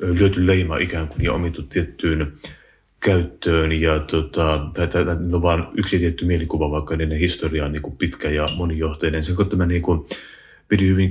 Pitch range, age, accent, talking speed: 80-85 Hz, 30-49, native, 150 wpm